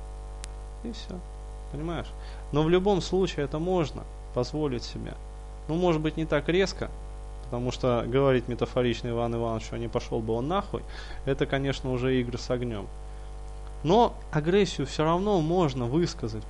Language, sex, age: Russian, male, 20-39